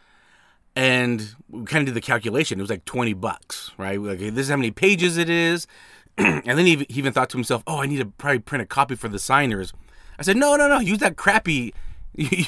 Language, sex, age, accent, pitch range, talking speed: English, male, 30-49, American, 100-140 Hz, 225 wpm